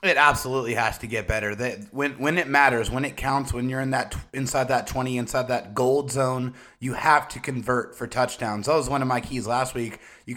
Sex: male